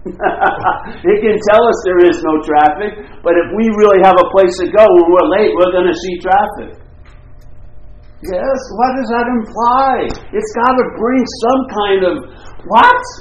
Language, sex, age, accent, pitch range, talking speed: English, male, 60-79, American, 180-245 Hz, 175 wpm